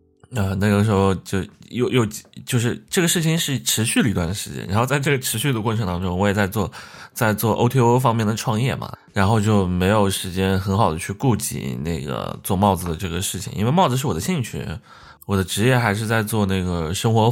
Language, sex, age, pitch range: Chinese, male, 20-39, 90-115 Hz